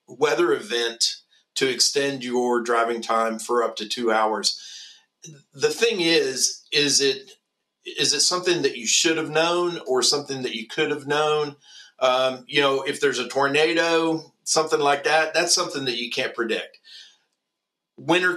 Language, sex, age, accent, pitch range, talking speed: English, male, 40-59, American, 130-165 Hz, 160 wpm